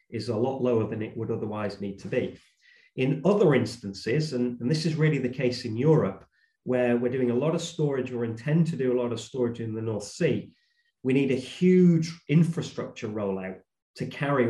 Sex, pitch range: male, 115-145 Hz